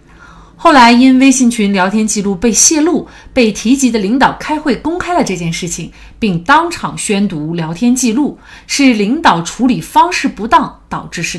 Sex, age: female, 30-49